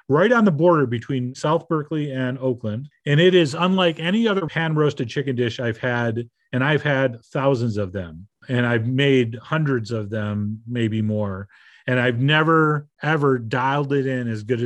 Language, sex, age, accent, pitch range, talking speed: English, male, 40-59, American, 125-160 Hz, 175 wpm